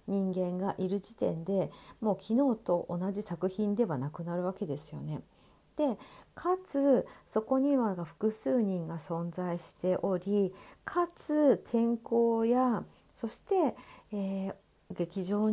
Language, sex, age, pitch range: Japanese, female, 50-69, 170-225 Hz